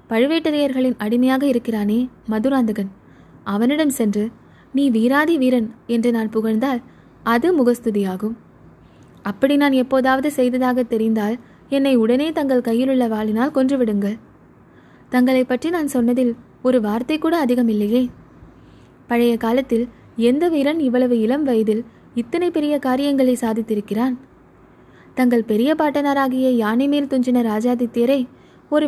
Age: 20-39